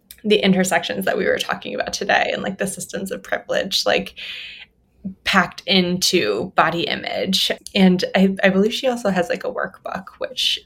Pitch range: 180-205 Hz